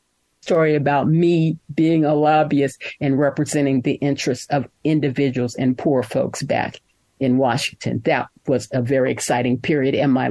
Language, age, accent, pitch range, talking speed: English, 50-69, American, 135-185 Hz, 150 wpm